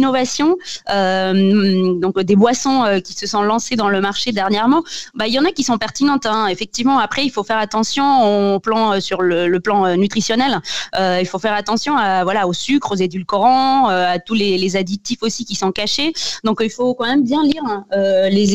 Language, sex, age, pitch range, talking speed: French, female, 20-39, 190-240 Hz, 220 wpm